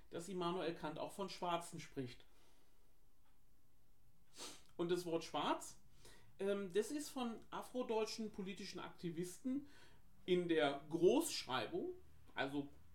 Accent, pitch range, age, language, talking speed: German, 155-210 Hz, 40-59, German, 100 wpm